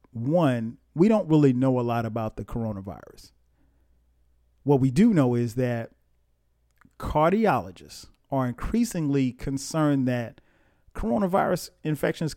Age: 40-59